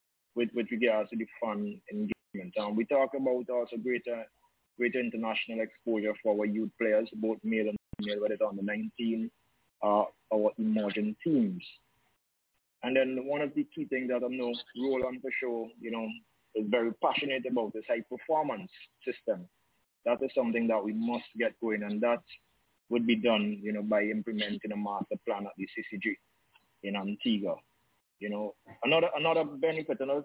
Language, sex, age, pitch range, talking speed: English, male, 20-39, 110-130 Hz, 170 wpm